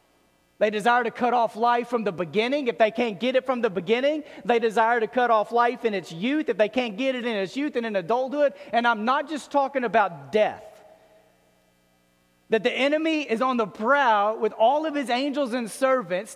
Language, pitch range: English, 215-265 Hz